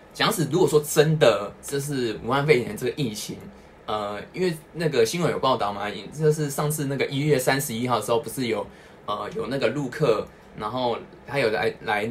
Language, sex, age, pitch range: Chinese, male, 20-39, 115-160 Hz